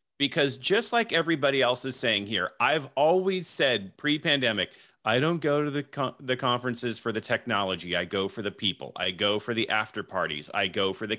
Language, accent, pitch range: English, American, 110-140 Hz